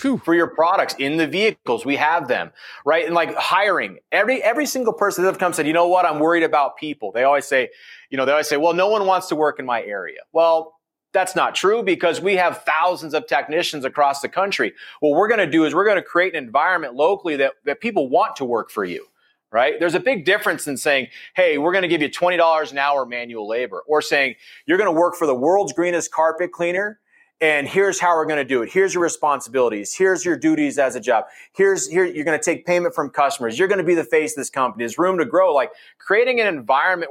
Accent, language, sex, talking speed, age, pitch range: American, English, male, 245 wpm, 30-49, 155-215 Hz